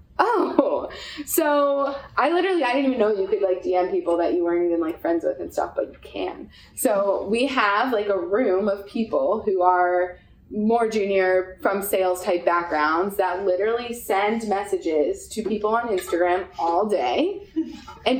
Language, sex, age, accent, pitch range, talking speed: English, female, 20-39, American, 180-230 Hz, 170 wpm